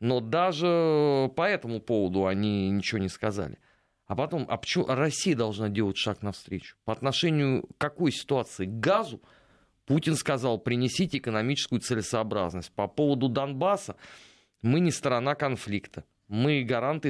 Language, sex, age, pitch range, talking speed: Russian, male, 30-49, 105-140 Hz, 135 wpm